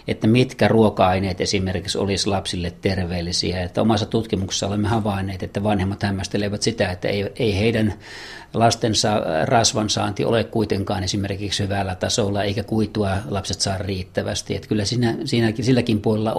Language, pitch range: Finnish, 95-110 Hz